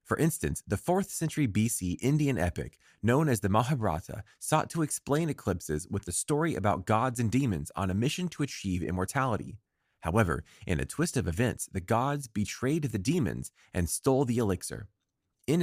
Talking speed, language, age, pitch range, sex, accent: 175 wpm, English, 30-49, 90-145 Hz, male, American